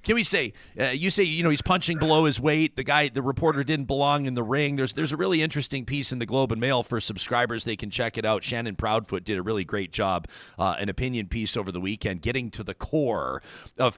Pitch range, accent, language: 110-140 Hz, American, English